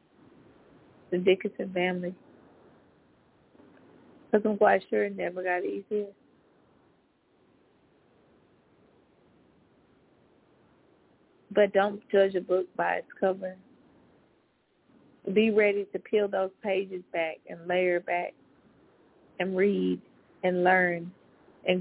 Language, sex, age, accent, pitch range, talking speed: English, female, 20-39, American, 190-235 Hz, 95 wpm